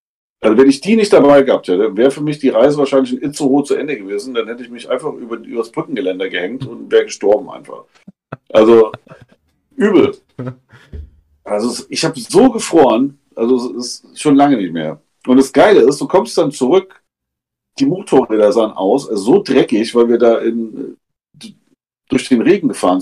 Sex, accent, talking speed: male, German, 180 wpm